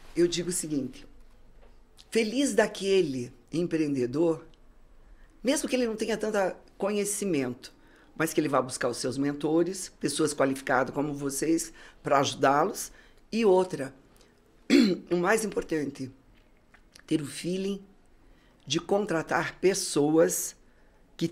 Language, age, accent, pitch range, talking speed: Portuguese, 50-69, Brazilian, 140-180 Hz, 115 wpm